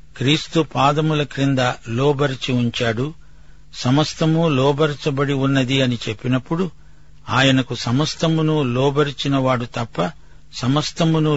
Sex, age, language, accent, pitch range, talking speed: male, 60-79, Telugu, native, 120-150 Hz, 80 wpm